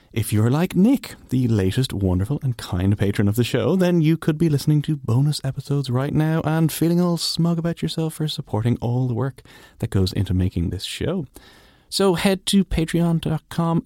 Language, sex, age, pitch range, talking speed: English, male, 30-49, 100-155 Hz, 190 wpm